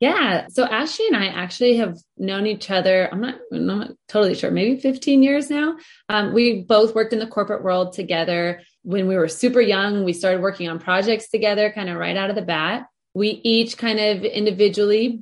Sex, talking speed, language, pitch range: female, 200 wpm, English, 175-215 Hz